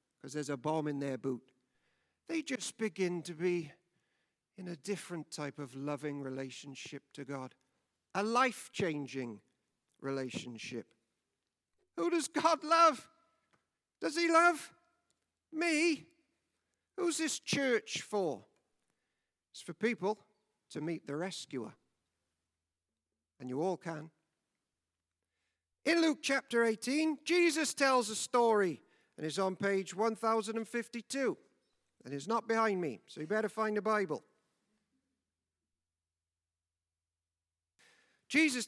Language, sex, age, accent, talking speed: English, male, 50-69, British, 110 wpm